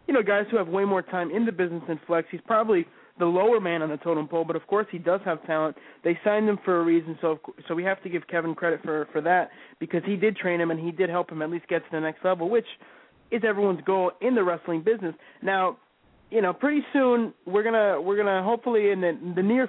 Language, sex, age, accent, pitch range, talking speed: English, male, 20-39, American, 170-210 Hz, 275 wpm